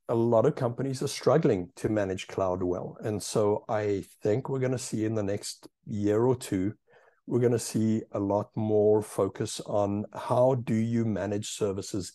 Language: English